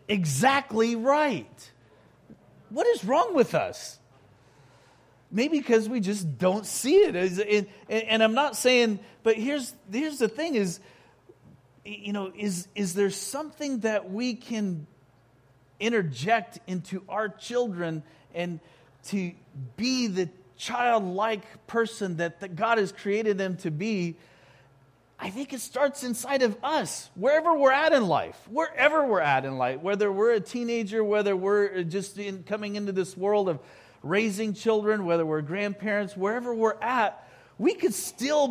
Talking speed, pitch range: 145 wpm, 185-245 Hz